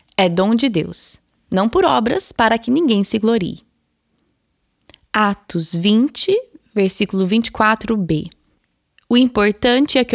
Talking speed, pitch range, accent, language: 120 wpm, 195-245 Hz, Brazilian, Portuguese